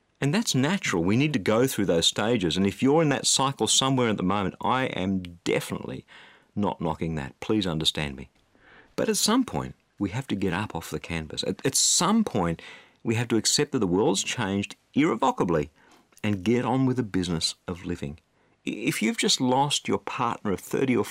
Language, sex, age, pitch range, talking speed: English, male, 50-69, 90-135 Hz, 200 wpm